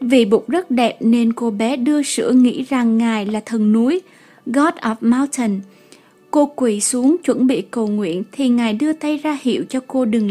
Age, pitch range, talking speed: 20-39, 220-280 Hz, 200 wpm